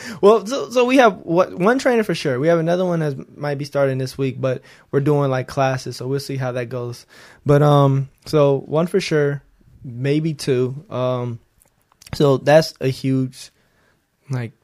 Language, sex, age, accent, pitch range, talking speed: English, male, 20-39, American, 125-155 Hz, 180 wpm